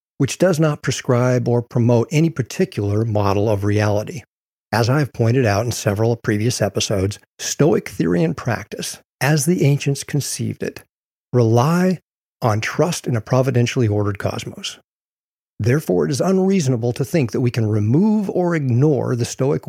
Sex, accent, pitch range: male, American, 115-145 Hz